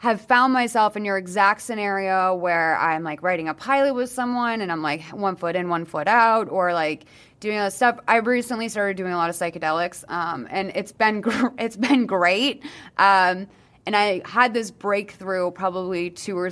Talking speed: 190 wpm